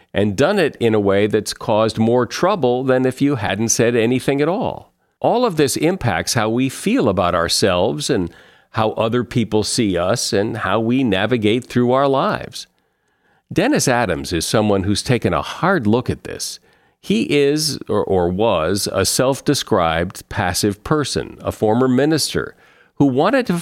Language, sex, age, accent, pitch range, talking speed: English, male, 50-69, American, 105-135 Hz, 170 wpm